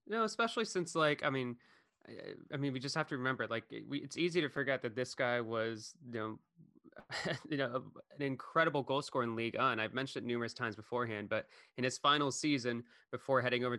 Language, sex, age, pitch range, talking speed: English, male, 20-39, 120-155 Hz, 220 wpm